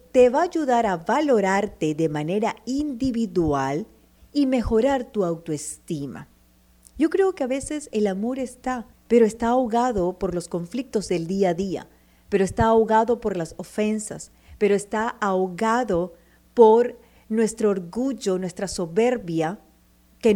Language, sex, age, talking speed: Spanish, female, 40-59, 135 wpm